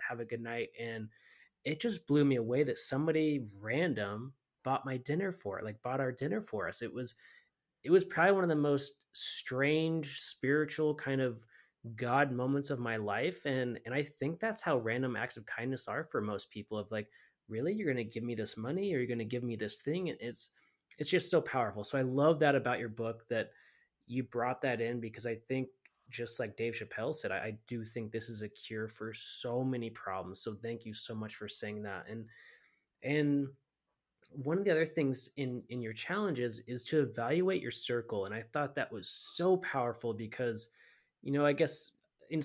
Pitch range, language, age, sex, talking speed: 115-145 Hz, English, 20-39, male, 210 wpm